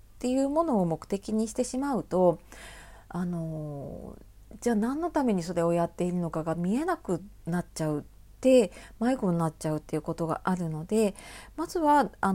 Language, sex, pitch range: Japanese, female, 170-250 Hz